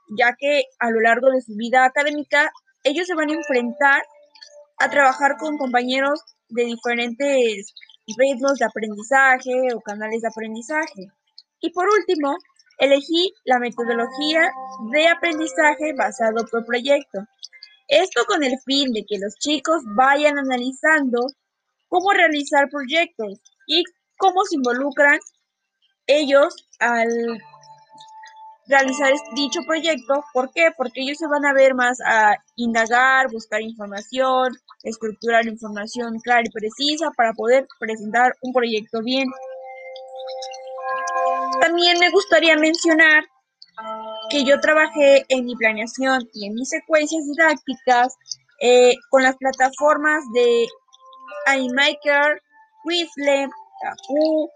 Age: 10-29